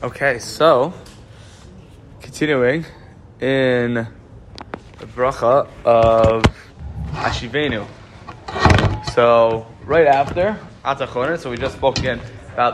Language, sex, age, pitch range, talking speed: English, male, 10-29, 120-155 Hz, 85 wpm